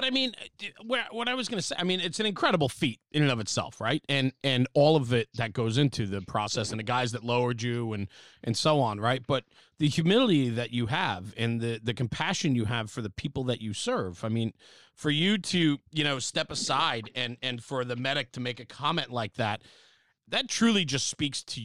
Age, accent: 30-49, American